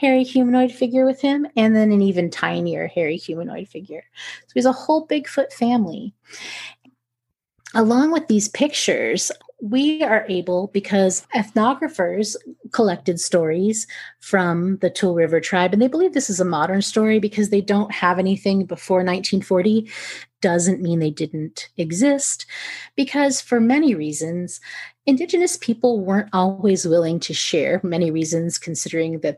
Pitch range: 185-270 Hz